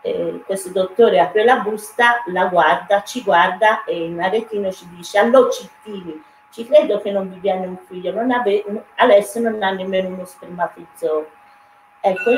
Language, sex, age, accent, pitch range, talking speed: Italian, female, 40-59, native, 180-235 Hz, 155 wpm